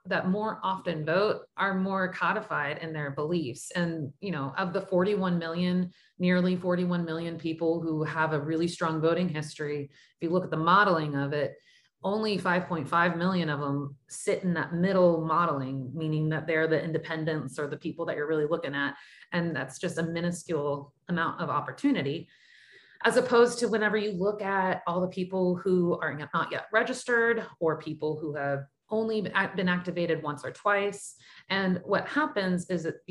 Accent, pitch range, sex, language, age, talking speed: American, 160-190 Hz, female, English, 30-49, 175 wpm